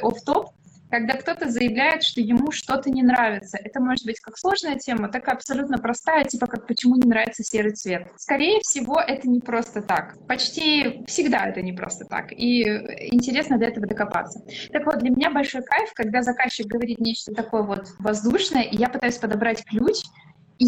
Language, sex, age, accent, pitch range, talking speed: Russian, female, 20-39, native, 225-280 Hz, 185 wpm